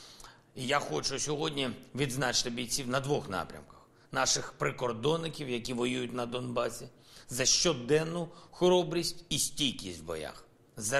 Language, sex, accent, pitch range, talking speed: Ukrainian, male, native, 115-150 Hz, 125 wpm